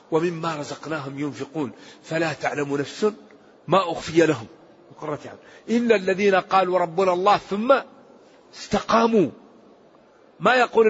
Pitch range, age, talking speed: 180-220 Hz, 40-59, 105 wpm